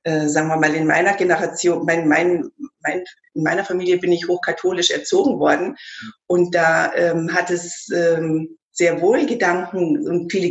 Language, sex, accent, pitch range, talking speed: German, female, German, 175-230 Hz, 150 wpm